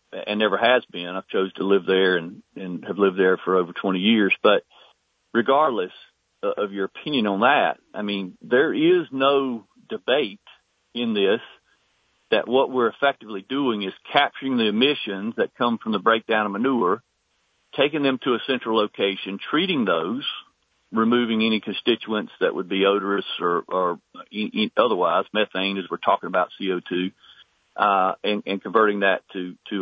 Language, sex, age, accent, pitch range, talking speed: English, male, 50-69, American, 95-115 Hz, 160 wpm